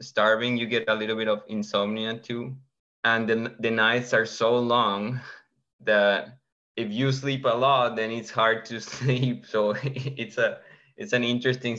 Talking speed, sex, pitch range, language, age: 170 wpm, male, 105-120 Hz, English, 20-39